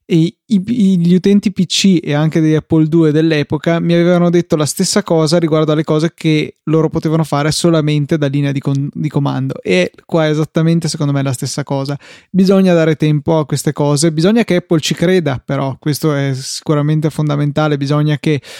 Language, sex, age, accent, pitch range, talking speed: Italian, male, 20-39, native, 150-175 Hz, 185 wpm